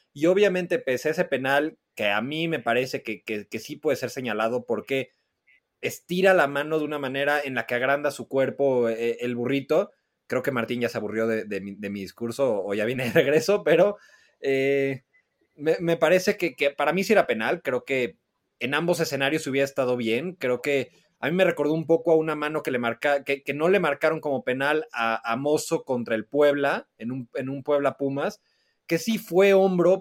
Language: Spanish